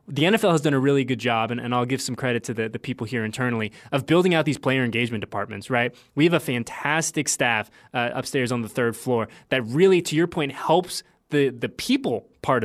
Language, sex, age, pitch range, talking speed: English, male, 20-39, 125-165 Hz, 235 wpm